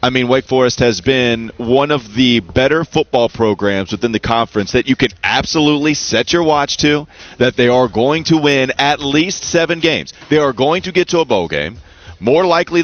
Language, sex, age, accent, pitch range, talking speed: English, male, 30-49, American, 115-160 Hz, 205 wpm